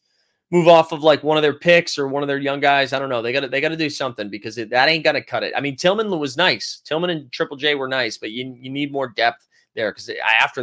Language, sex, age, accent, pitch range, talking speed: English, male, 30-49, American, 125-170 Hz, 295 wpm